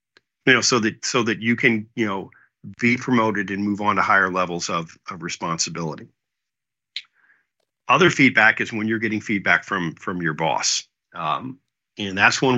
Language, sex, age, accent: English, male, 50-69, American